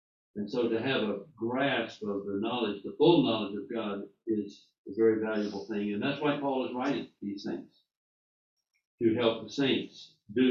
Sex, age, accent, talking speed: male, 60-79, American, 185 wpm